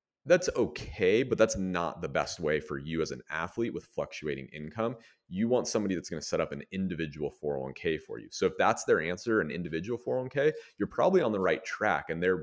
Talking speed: 220 wpm